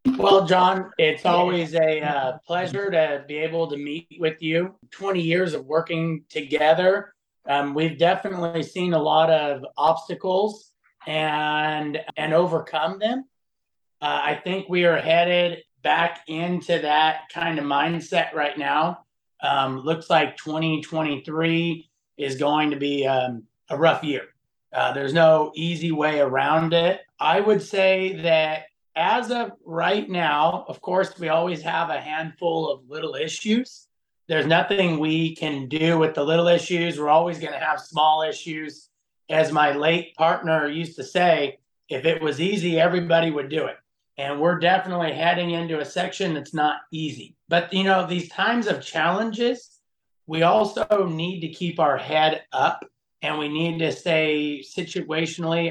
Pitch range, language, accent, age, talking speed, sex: 155-175 Hz, English, American, 30-49, 155 wpm, male